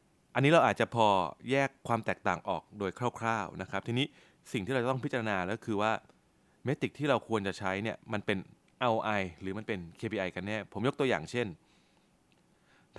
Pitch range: 95-130 Hz